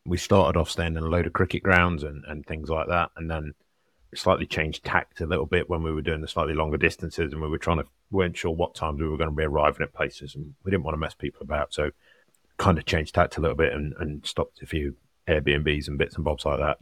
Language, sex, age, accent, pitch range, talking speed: English, male, 30-49, British, 75-85 Hz, 270 wpm